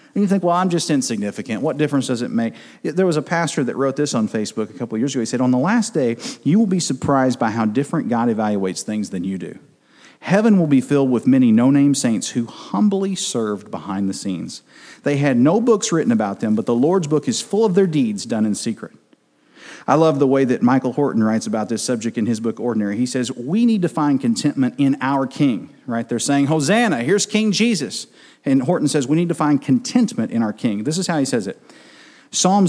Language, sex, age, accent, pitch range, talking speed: English, male, 40-59, American, 120-190 Hz, 235 wpm